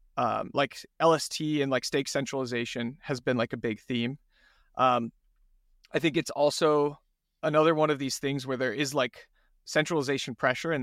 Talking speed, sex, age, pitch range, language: 165 wpm, male, 30-49, 130-155 Hz, English